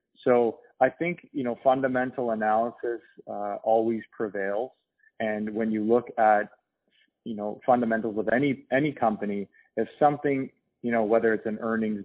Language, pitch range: English, 110-120 Hz